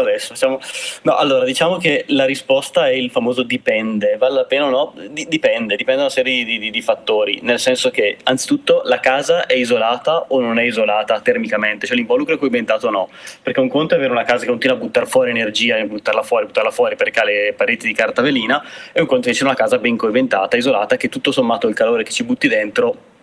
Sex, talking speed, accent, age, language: male, 225 wpm, native, 20-39, Italian